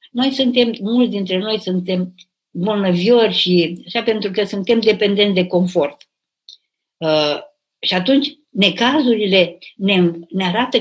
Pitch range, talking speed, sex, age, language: 185-240 Hz, 115 wpm, female, 50-69, Romanian